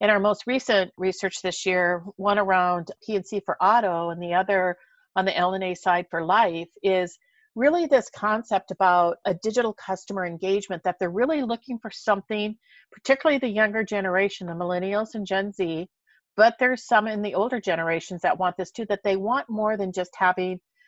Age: 50-69